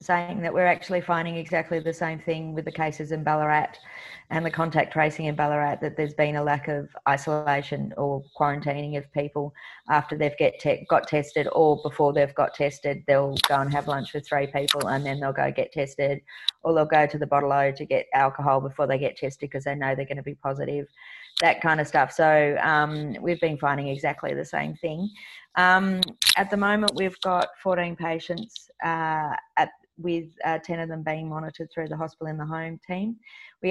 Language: English